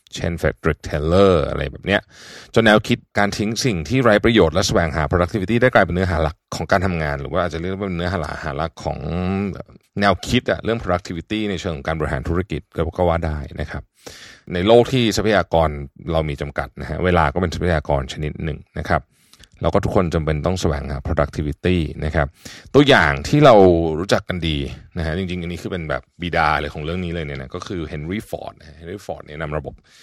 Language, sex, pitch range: Thai, male, 80-100 Hz